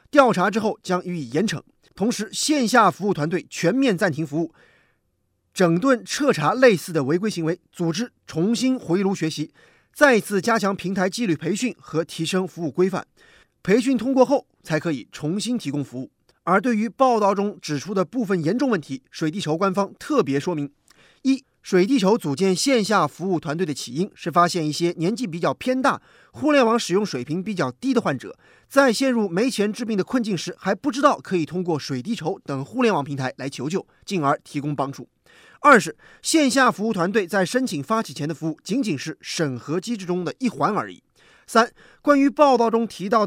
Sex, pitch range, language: male, 160-235 Hz, Chinese